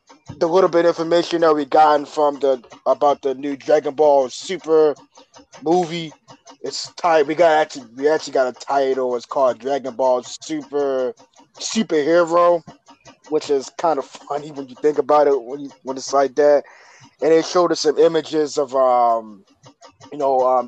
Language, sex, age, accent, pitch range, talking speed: English, male, 20-39, American, 130-155 Hz, 175 wpm